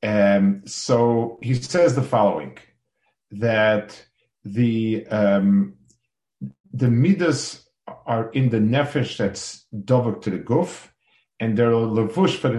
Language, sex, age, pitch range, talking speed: English, male, 50-69, 105-130 Hz, 125 wpm